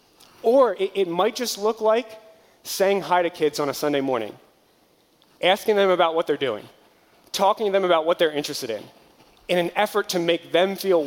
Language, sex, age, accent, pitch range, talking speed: English, male, 30-49, American, 140-175 Hz, 190 wpm